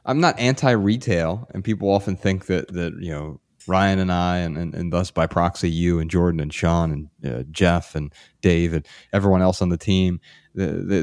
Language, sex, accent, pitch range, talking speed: English, male, American, 85-105 Hz, 205 wpm